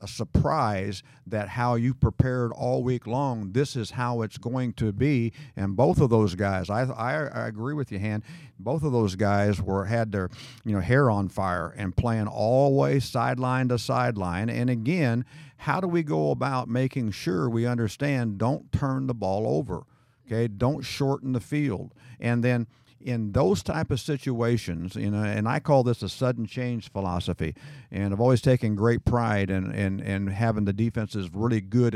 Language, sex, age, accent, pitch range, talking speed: English, male, 50-69, American, 110-140 Hz, 185 wpm